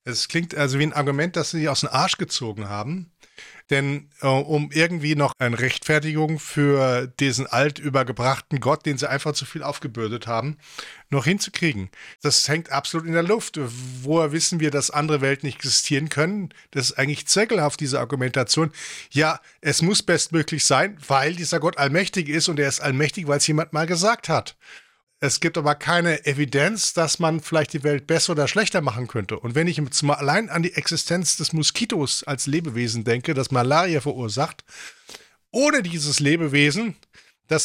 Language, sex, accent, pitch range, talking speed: English, male, German, 140-170 Hz, 175 wpm